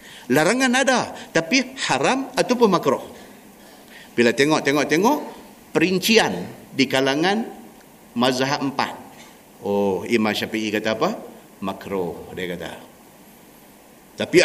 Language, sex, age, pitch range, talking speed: Malay, male, 50-69, 115-155 Hz, 90 wpm